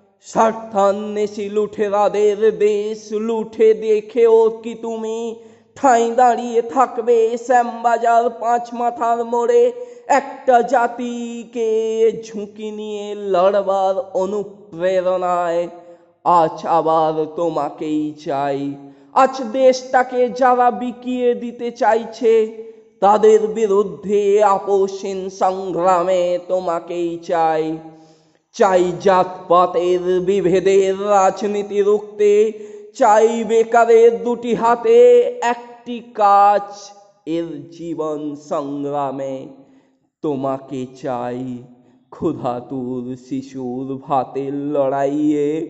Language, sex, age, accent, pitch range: Bengali, male, 20-39, native, 160-225 Hz